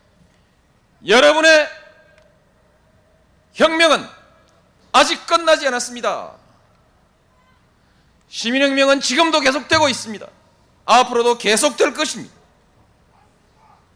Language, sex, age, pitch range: Korean, male, 40-59, 210-310 Hz